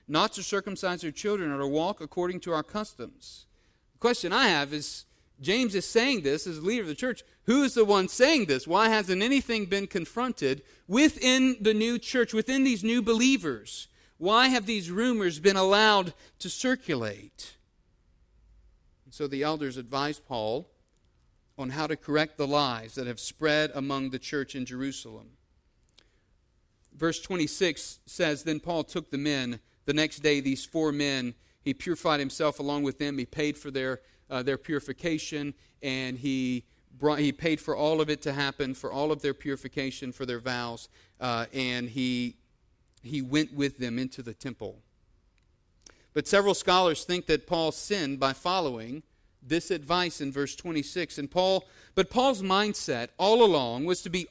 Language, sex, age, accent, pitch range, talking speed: English, male, 40-59, American, 135-190 Hz, 170 wpm